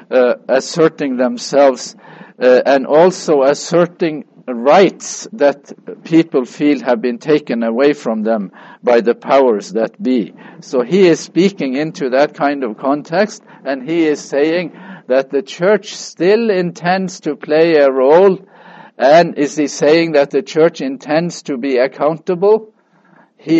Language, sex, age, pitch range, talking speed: English, male, 50-69, 135-175 Hz, 140 wpm